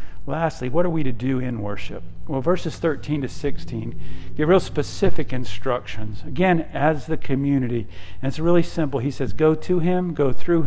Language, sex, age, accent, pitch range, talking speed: English, male, 50-69, American, 120-200 Hz, 180 wpm